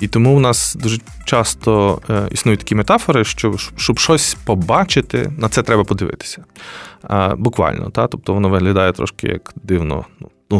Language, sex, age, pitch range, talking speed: Ukrainian, male, 20-39, 95-115 Hz, 140 wpm